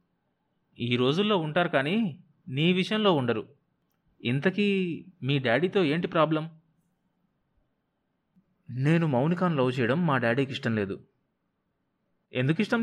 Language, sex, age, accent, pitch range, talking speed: Telugu, male, 30-49, native, 130-185 Hz, 105 wpm